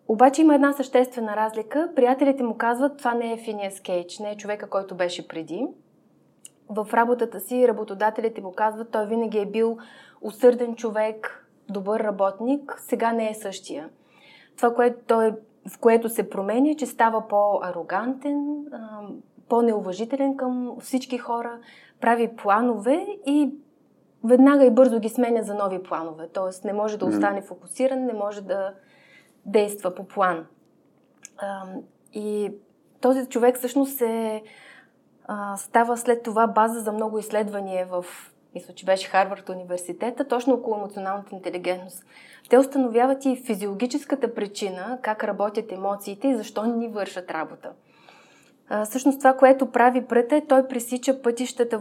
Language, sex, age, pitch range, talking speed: Bulgarian, female, 20-39, 205-255 Hz, 140 wpm